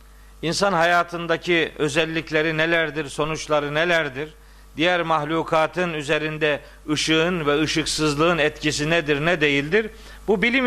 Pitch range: 145-200 Hz